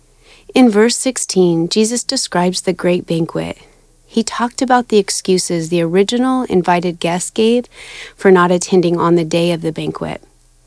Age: 30-49